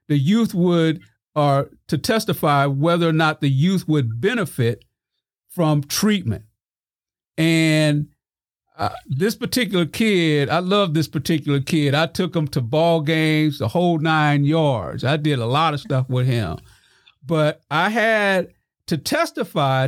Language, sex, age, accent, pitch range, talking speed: English, male, 50-69, American, 135-170 Hz, 145 wpm